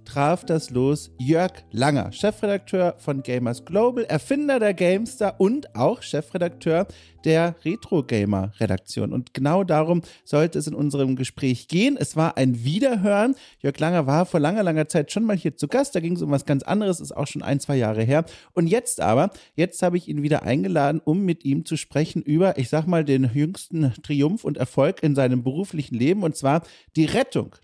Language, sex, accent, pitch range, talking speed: German, male, German, 130-175 Hz, 190 wpm